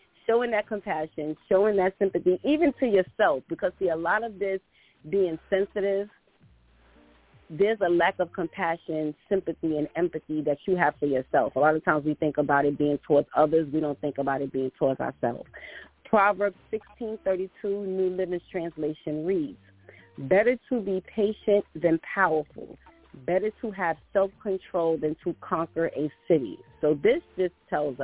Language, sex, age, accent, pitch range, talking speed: English, female, 30-49, American, 155-205 Hz, 160 wpm